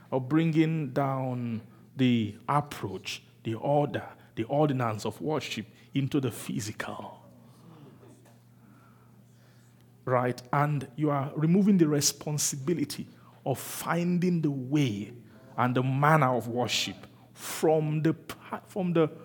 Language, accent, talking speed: English, Nigerian, 105 wpm